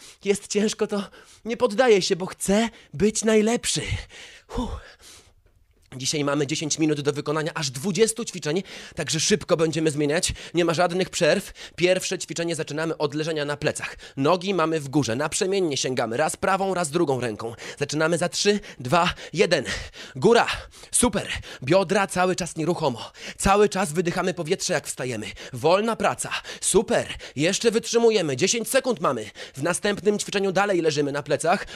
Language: Polish